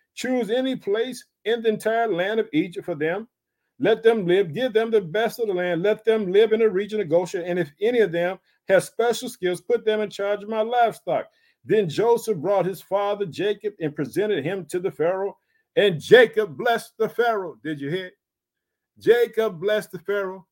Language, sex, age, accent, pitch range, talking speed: English, male, 50-69, American, 175-220 Hz, 200 wpm